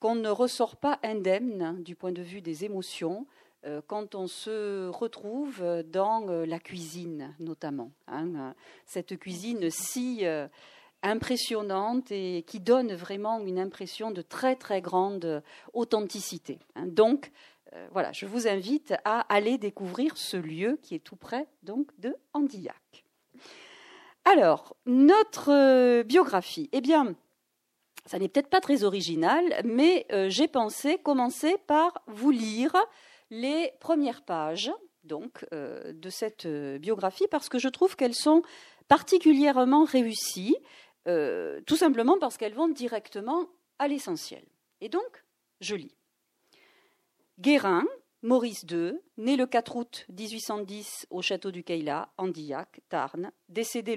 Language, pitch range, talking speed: French, 185-285 Hz, 135 wpm